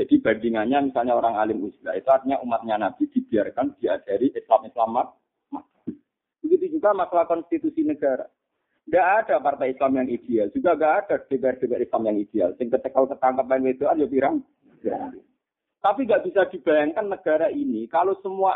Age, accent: 50-69, native